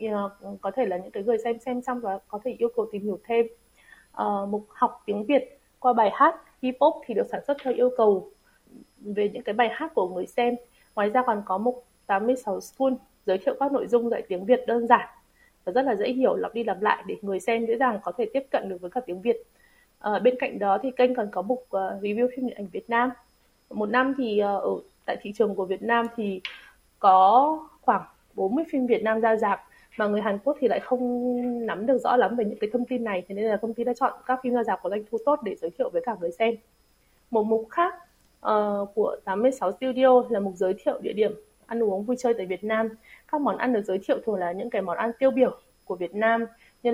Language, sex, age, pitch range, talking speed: Vietnamese, female, 20-39, 205-255 Hz, 250 wpm